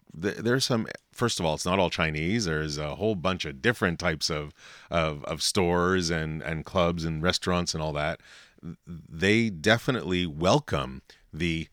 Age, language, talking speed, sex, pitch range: 30-49, English, 165 wpm, male, 80-95 Hz